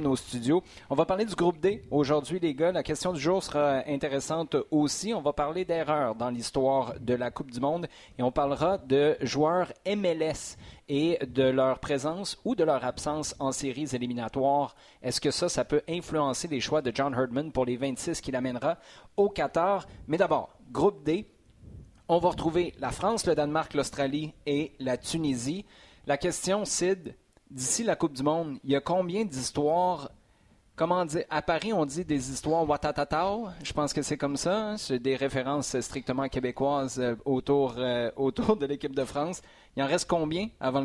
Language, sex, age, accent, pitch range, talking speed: French, male, 30-49, Canadian, 135-170 Hz, 185 wpm